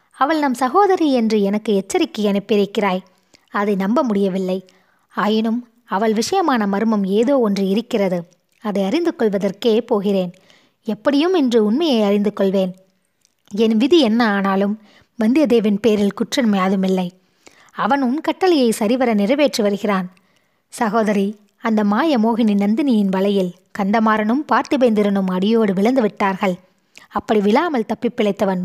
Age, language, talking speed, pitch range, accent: 20-39, Tamil, 115 wpm, 200-240 Hz, native